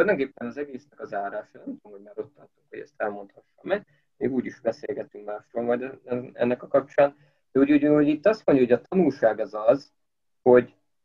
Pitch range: 115-150 Hz